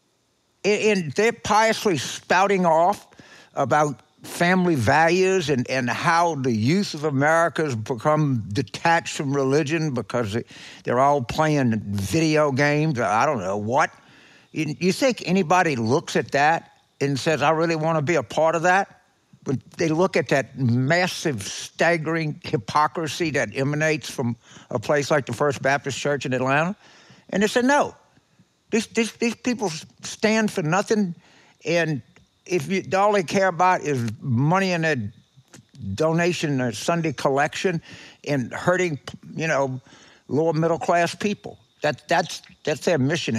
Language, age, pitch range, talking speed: English, 60-79, 130-175 Hz, 145 wpm